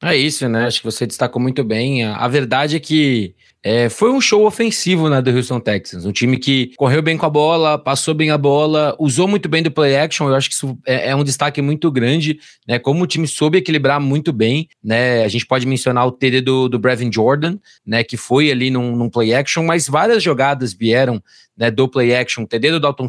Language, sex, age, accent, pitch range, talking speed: Portuguese, male, 20-39, Brazilian, 125-160 Hz, 230 wpm